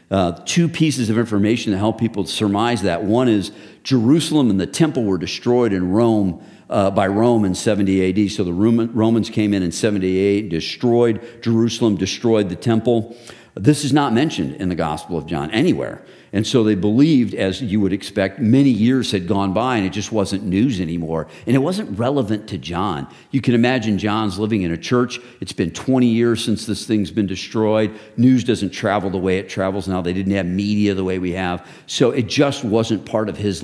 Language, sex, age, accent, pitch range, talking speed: English, male, 50-69, American, 95-115 Hz, 200 wpm